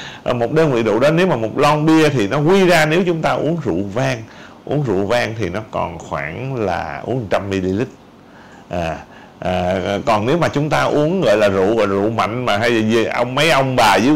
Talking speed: 220 wpm